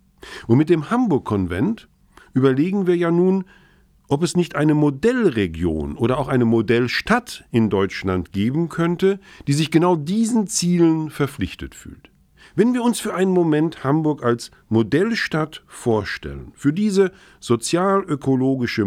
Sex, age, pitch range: male, 50-69, 110-175 Hz